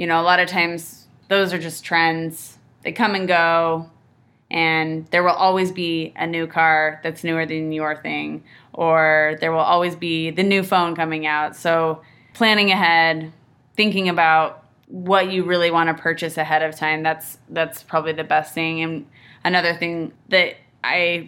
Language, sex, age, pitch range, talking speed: English, female, 20-39, 160-175 Hz, 175 wpm